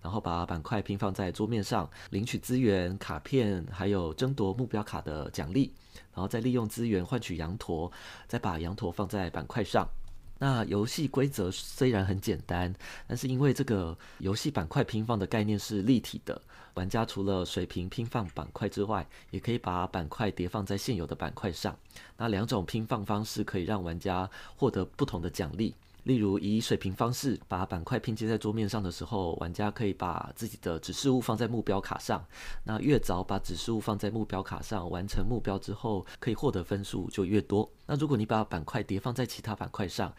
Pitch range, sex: 90-115 Hz, male